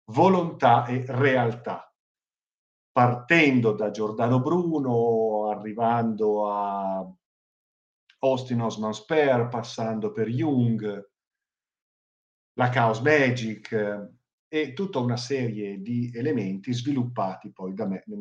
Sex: male